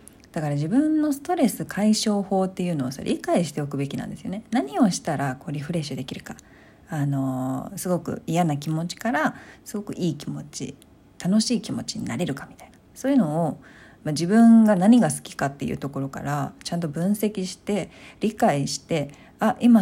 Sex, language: female, Japanese